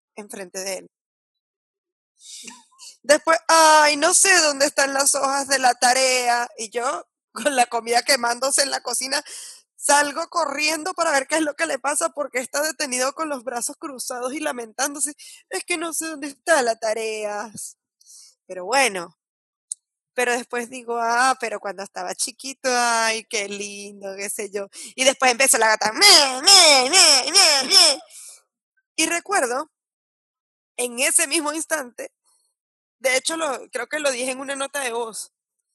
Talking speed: 160 wpm